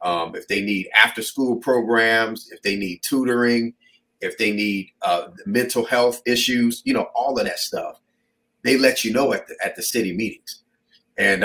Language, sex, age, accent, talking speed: English, male, 40-59, American, 180 wpm